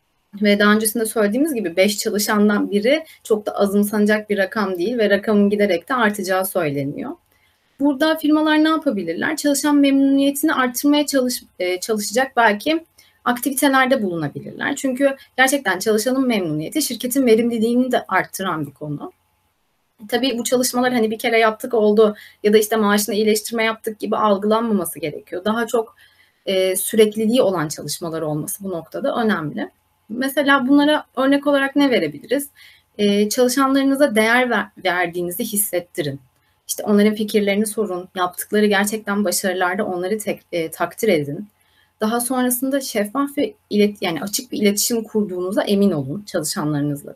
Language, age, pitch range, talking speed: Turkish, 30-49, 195-250 Hz, 135 wpm